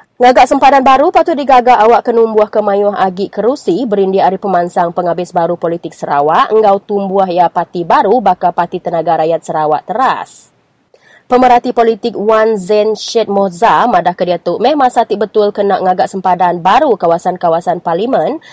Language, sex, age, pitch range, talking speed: English, female, 20-39, 180-235 Hz, 150 wpm